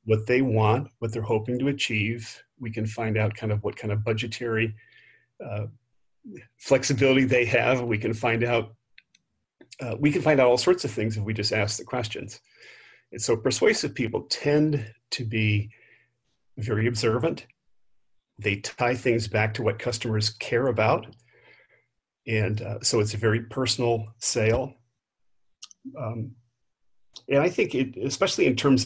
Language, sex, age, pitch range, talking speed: English, male, 40-59, 110-125 Hz, 155 wpm